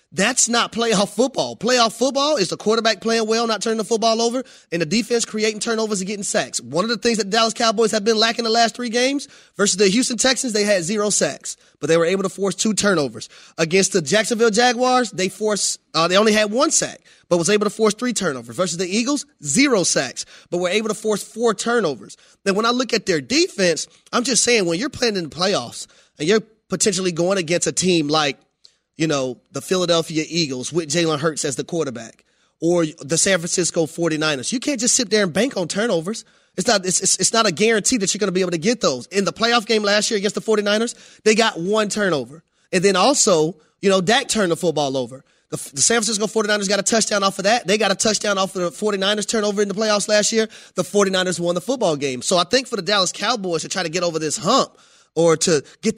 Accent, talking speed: American, 235 wpm